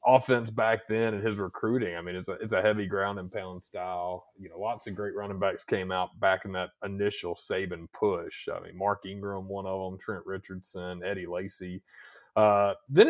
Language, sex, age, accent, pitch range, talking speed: English, male, 30-49, American, 95-140 Hz, 200 wpm